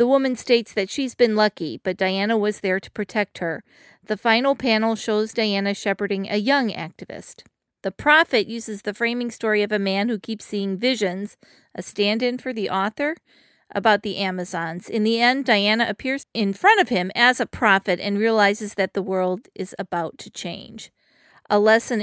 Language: English